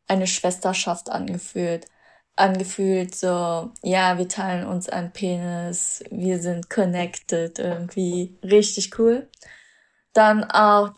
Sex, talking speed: female, 105 wpm